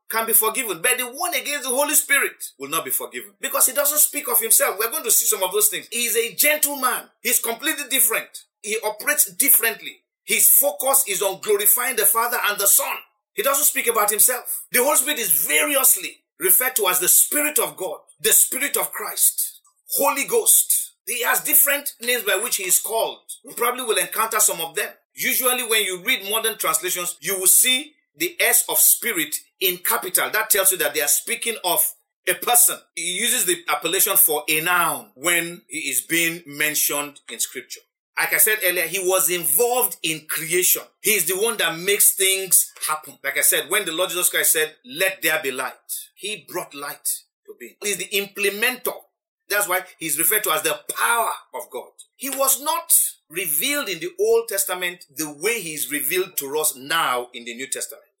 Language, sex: English, male